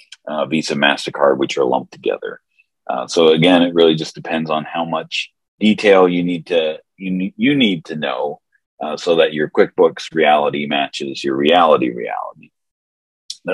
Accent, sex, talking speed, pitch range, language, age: American, male, 170 wpm, 75-105 Hz, English, 40-59